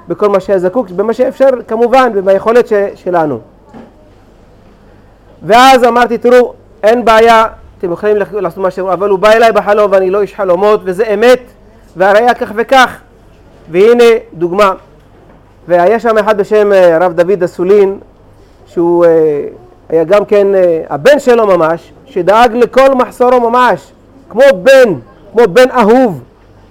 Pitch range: 185-245 Hz